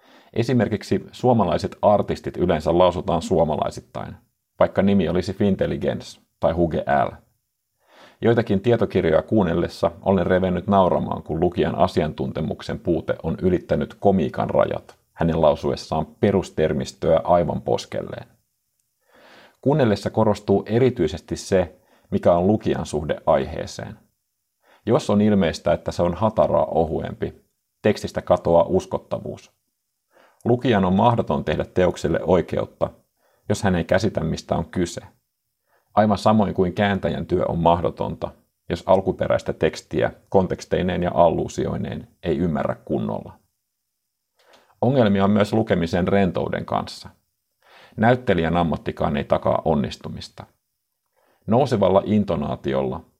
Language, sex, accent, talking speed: Finnish, male, native, 105 wpm